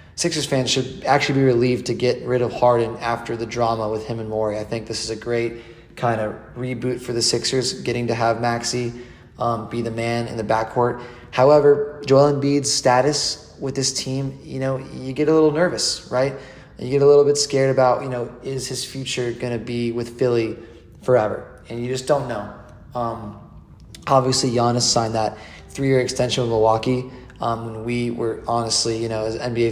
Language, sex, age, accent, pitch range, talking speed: English, male, 20-39, American, 115-130 Hz, 200 wpm